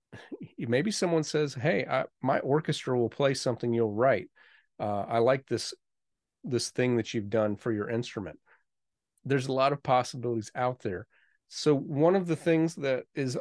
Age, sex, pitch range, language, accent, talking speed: 40-59, male, 120-145 Hz, English, American, 170 wpm